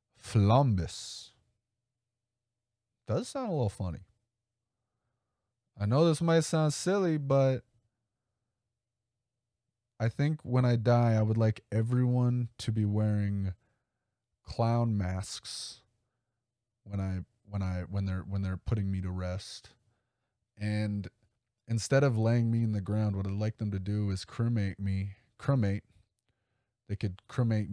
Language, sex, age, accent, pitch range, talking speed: English, male, 20-39, American, 100-120 Hz, 130 wpm